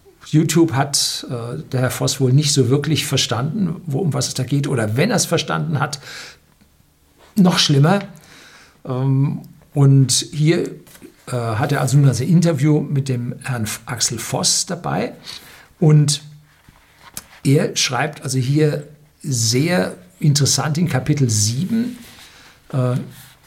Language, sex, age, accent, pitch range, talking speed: German, male, 60-79, German, 125-160 Hz, 135 wpm